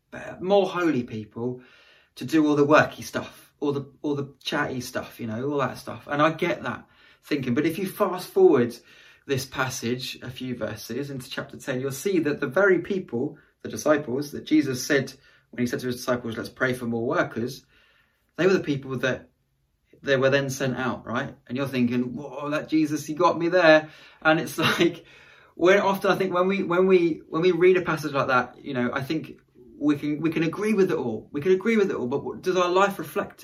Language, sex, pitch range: English, male, 130-180 Hz